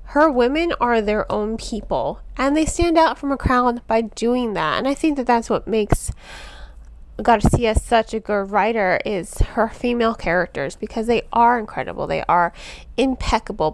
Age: 20-39